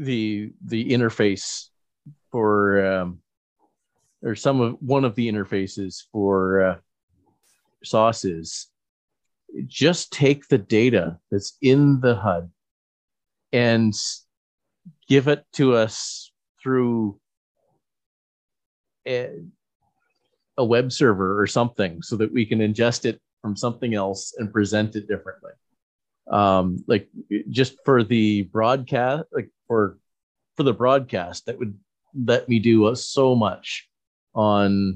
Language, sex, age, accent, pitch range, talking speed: English, male, 40-59, American, 95-120 Hz, 115 wpm